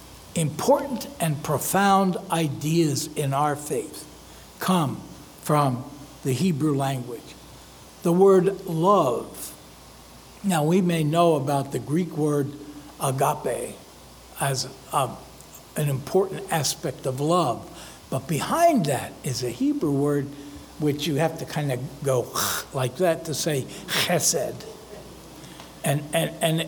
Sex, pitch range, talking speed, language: male, 140-185 Hz, 115 wpm, English